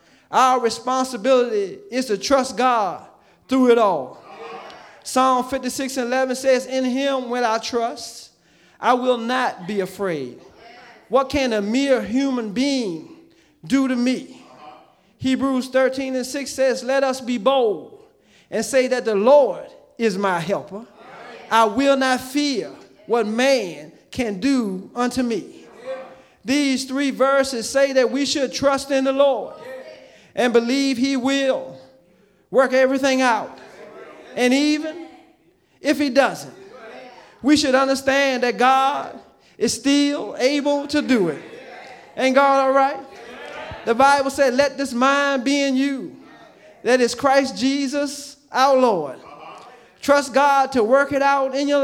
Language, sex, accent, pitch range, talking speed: English, male, American, 245-275 Hz, 140 wpm